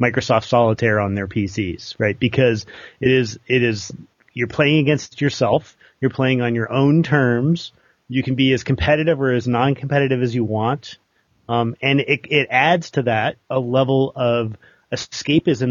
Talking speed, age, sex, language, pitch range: 165 wpm, 30-49, male, English, 110-130 Hz